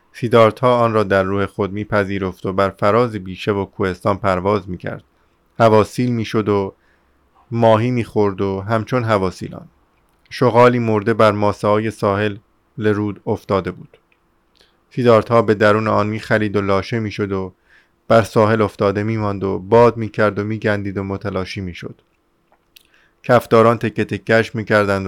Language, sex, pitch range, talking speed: Persian, male, 100-115 Hz, 150 wpm